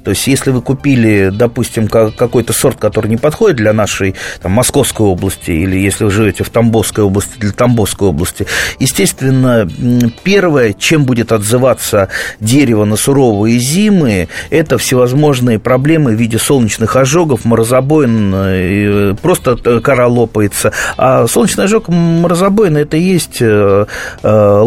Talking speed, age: 125 wpm, 30-49